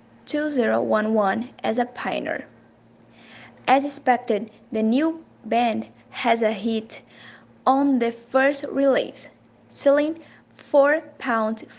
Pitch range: 225-265 Hz